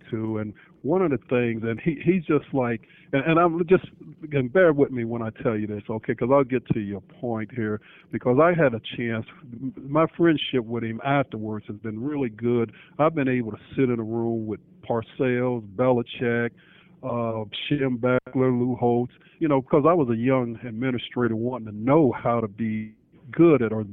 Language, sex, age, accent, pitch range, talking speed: English, male, 50-69, American, 115-150 Hz, 200 wpm